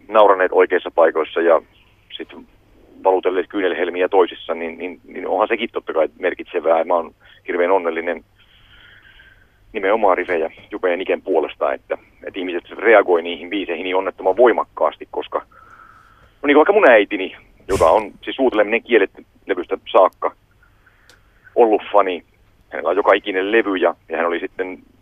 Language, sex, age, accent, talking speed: Finnish, male, 40-59, native, 140 wpm